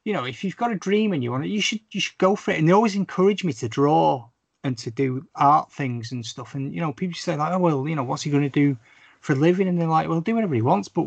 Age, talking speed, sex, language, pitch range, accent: 30-49, 320 wpm, male, English, 115-165 Hz, British